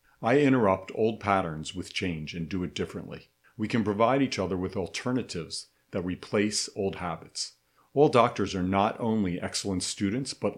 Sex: male